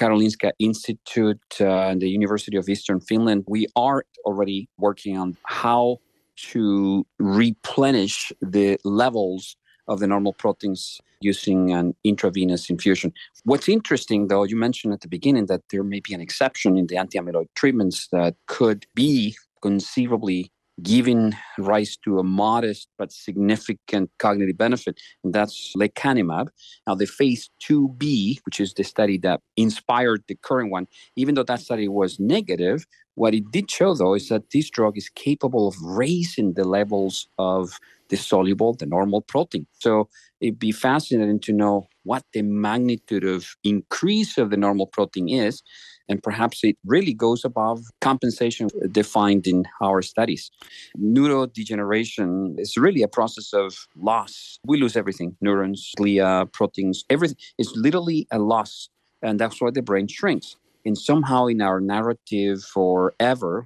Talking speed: 150 wpm